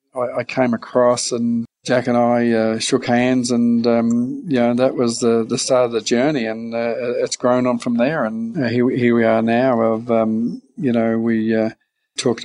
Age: 50-69